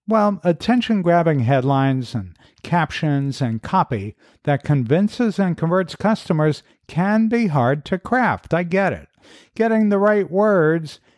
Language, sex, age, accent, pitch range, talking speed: English, male, 50-69, American, 130-185 Hz, 135 wpm